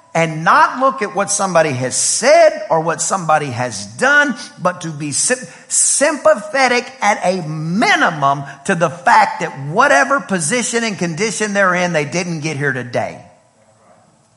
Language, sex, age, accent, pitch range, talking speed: English, male, 50-69, American, 150-210 Hz, 150 wpm